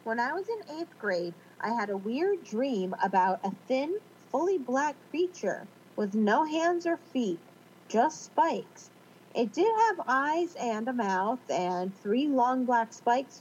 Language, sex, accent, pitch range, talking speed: English, female, American, 205-300 Hz, 160 wpm